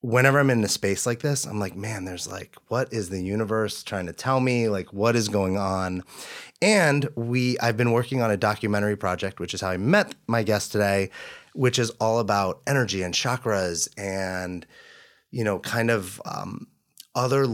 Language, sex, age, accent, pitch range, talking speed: English, male, 30-49, American, 95-115 Hz, 190 wpm